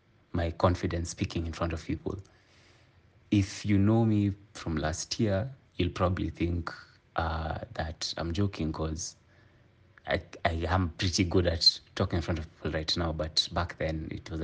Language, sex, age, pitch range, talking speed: English, male, 30-49, 80-100 Hz, 165 wpm